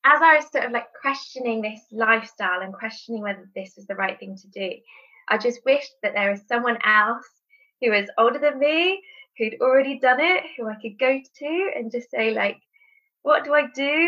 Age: 20-39